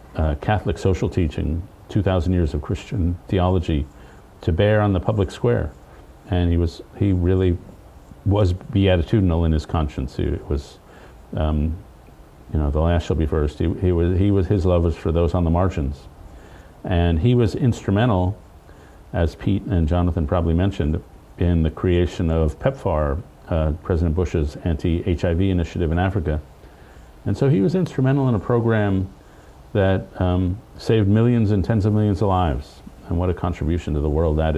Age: 50-69